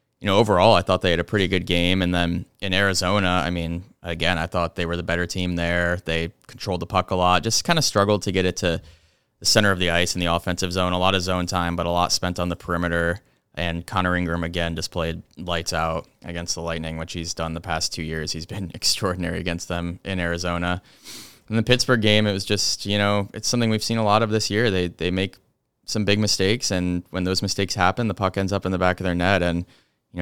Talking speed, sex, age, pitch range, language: 245 wpm, male, 20-39, 85-100 Hz, English